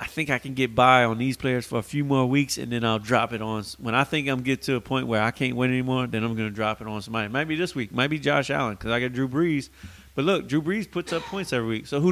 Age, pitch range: 30-49, 110-130 Hz